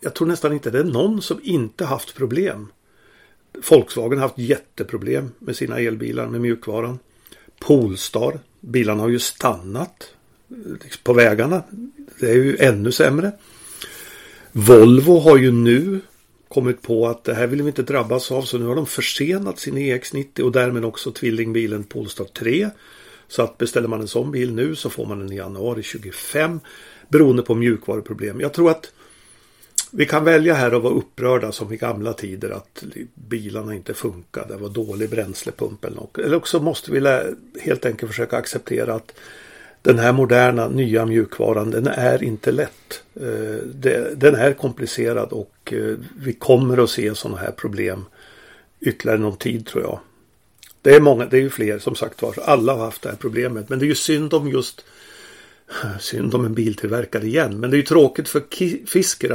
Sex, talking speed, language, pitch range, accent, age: male, 175 wpm, Swedish, 115-150 Hz, native, 60-79